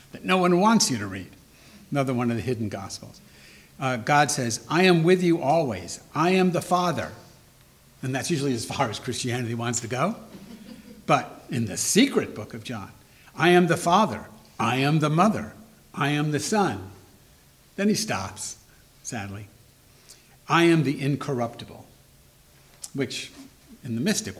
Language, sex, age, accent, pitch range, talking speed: English, male, 60-79, American, 115-165 Hz, 160 wpm